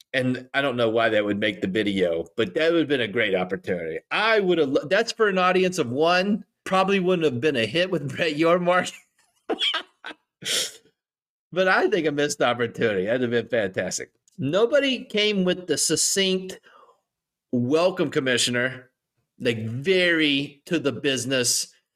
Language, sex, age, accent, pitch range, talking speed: English, male, 30-49, American, 120-180 Hz, 160 wpm